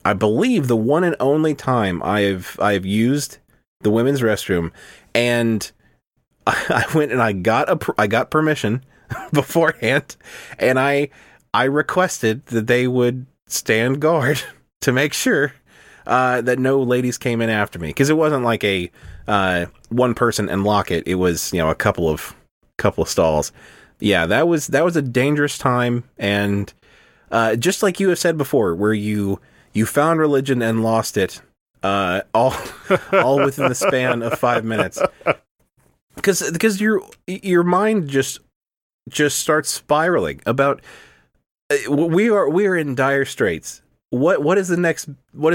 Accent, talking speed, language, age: American, 160 wpm, English, 30-49